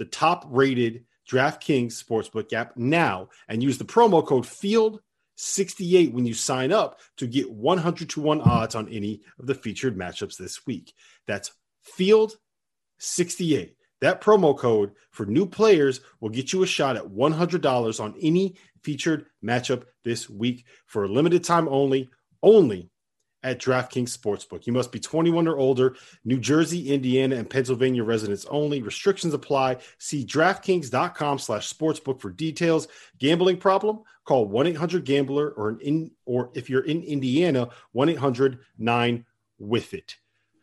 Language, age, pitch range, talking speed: English, 40-59, 115-160 Hz, 135 wpm